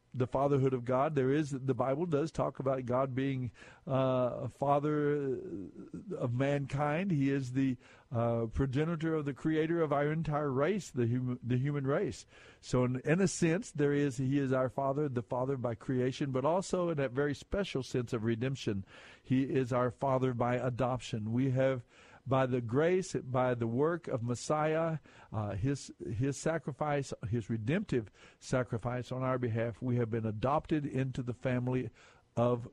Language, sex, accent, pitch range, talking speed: English, male, American, 120-145 Hz, 170 wpm